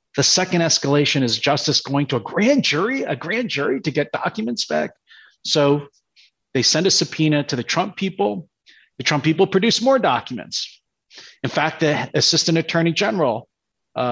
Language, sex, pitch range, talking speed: English, male, 130-175 Hz, 160 wpm